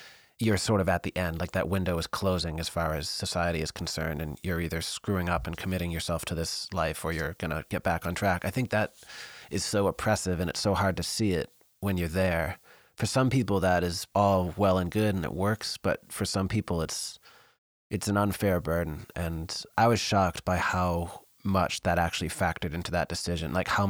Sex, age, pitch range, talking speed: male, 30-49, 85-100 Hz, 220 wpm